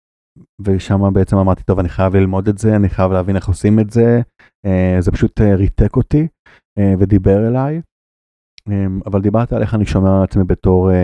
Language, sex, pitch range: Hebrew, male, 95-110 Hz